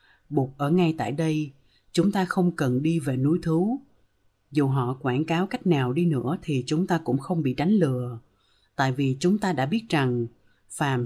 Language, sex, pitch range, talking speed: Vietnamese, female, 125-175 Hz, 200 wpm